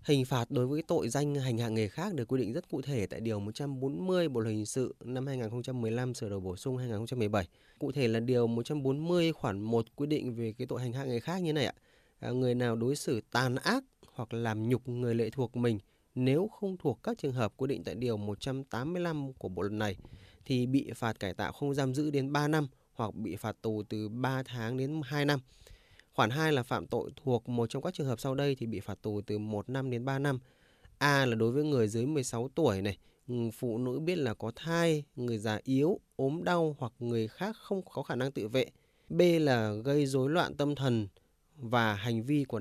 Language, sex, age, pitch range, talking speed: Vietnamese, male, 20-39, 115-145 Hz, 230 wpm